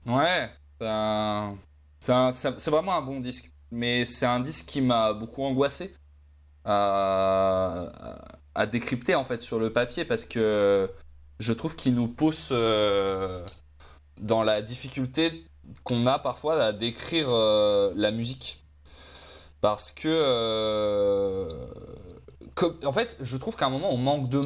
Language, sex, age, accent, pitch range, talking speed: French, male, 20-39, French, 100-130 Hz, 135 wpm